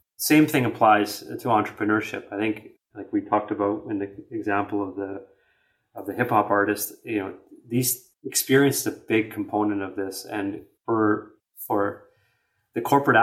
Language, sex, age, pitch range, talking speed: English, male, 30-49, 100-115 Hz, 165 wpm